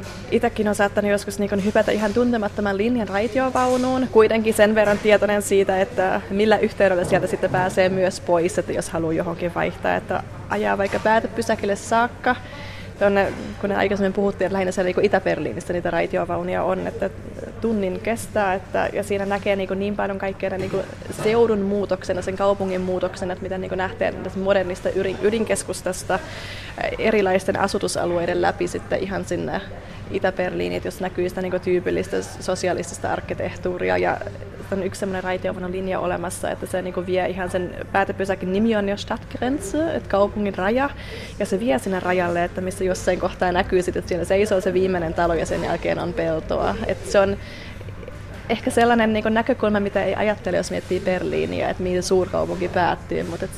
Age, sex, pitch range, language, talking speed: 20-39, female, 180-205 Hz, Finnish, 165 wpm